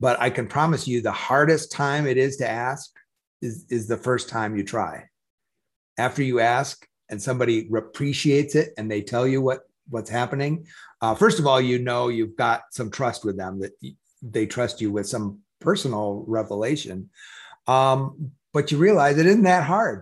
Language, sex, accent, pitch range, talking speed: English, male, American, 120-155 Hz, 180 wpm